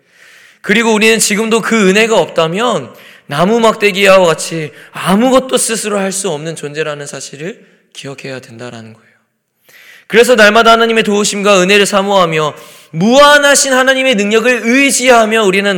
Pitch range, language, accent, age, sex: 195-265 Hz, Korean, native, 20-39, male